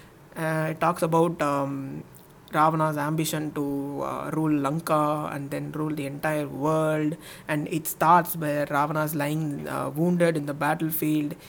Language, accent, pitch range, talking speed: Tamil, native, 145-175 Hz, 150 wpm